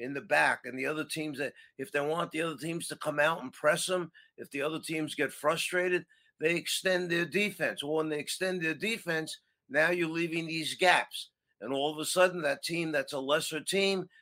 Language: English